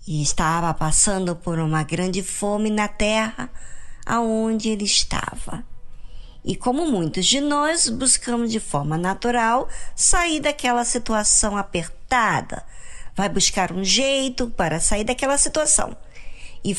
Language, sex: Portuguese, male